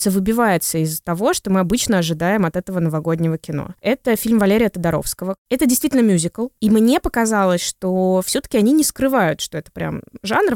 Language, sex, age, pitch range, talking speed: Russian, female, 20-39, 170-215 Hz, 170 wpm